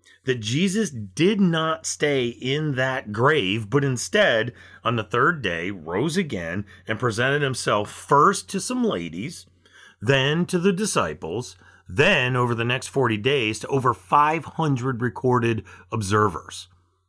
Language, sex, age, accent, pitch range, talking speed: English, male, 40-59, American, 90-145 Hz, 135 wpm